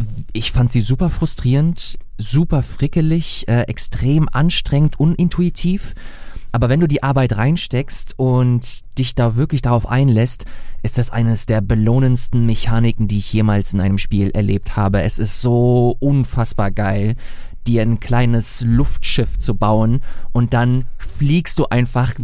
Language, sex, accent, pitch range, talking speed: German, male, German, 110-130 Hz, 145 wpm